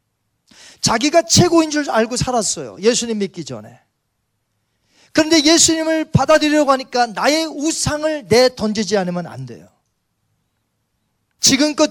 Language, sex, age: Korean, male, 40-59